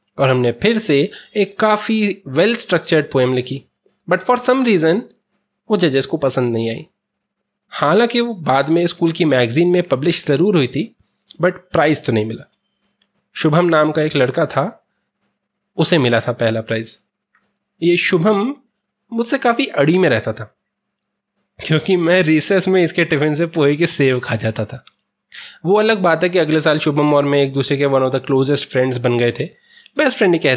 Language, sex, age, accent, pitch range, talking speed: Hindi, male, 20-39, native, 135-190 Hz, 185 wpm